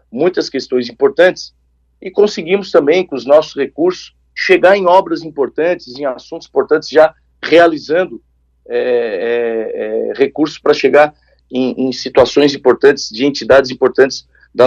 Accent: Brazilian